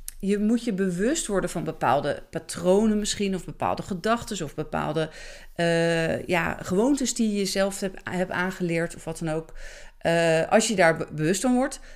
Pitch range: 160-215 Hz